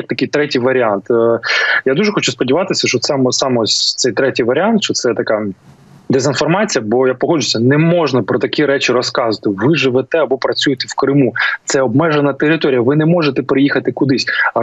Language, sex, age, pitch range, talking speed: Ukrainian, male, 20-39, 120-150 Hz, 165 wpm